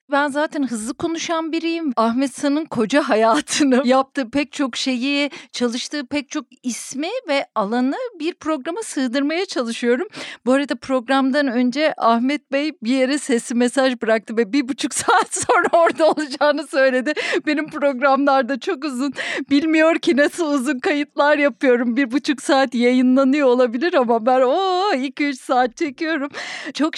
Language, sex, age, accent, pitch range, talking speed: Turkish, female, 40-59, native, 250-320 Hz, 145 wpm